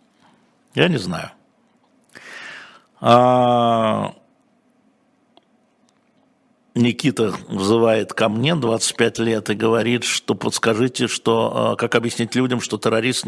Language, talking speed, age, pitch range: Russian, 85 wpm, 60-79, 115-145 Hz